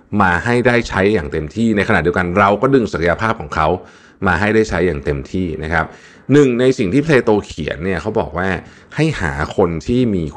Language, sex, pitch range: Thai, male, 75-110 Hz